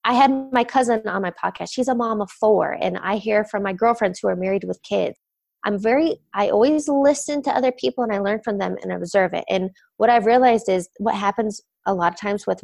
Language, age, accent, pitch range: English, 20-39, American, 205-245 Hz